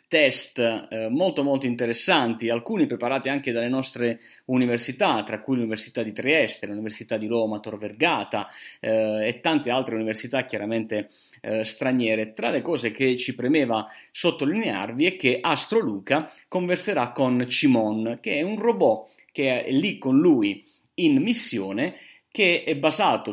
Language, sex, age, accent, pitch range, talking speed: Italian, male, 30-49, native, 115-155 Hz, 145 wpm